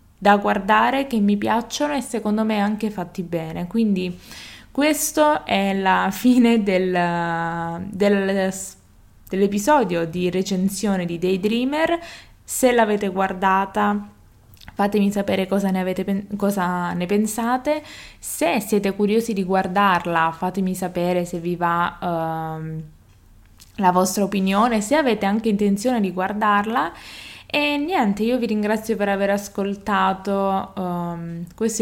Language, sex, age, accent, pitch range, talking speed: Italian, female, 20-39, native, 180-220 Hz, 110 wpm